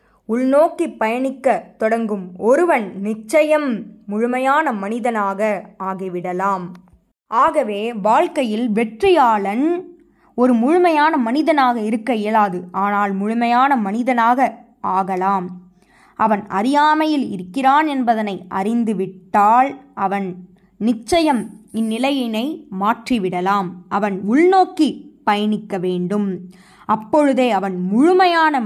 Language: Tamil